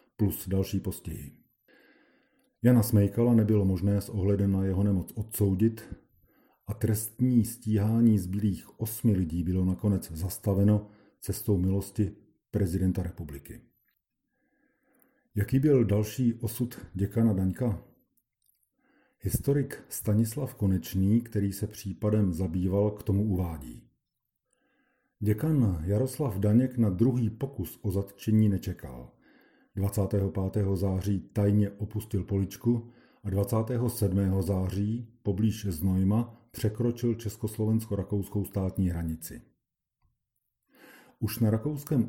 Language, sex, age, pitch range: Czech, male, 50-69, 95-115 Hz